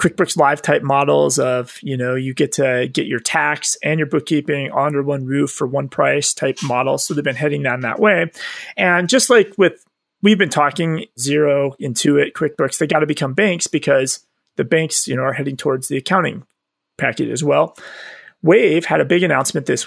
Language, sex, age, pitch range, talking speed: English, male, 30-49, 140-185 Hz, 200 wpm